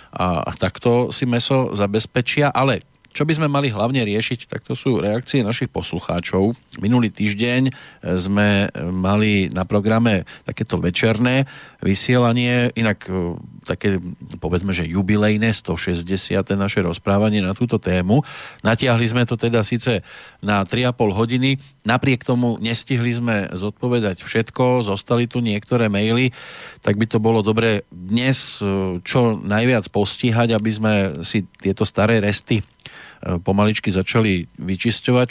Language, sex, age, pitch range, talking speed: Slovak, male, 40-59, 100-120 Hz, 125 wpm